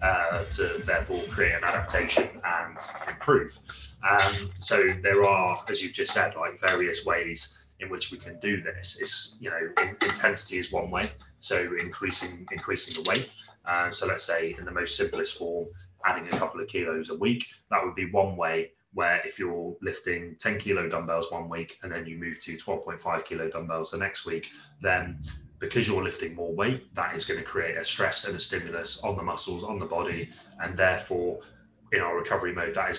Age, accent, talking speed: 20-39, British, 195 wpm